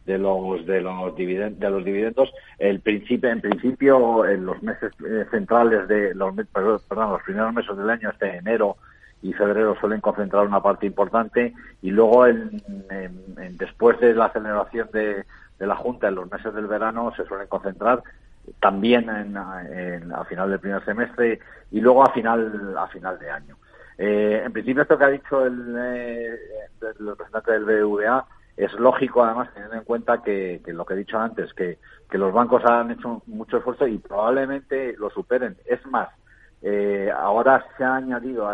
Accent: Spanish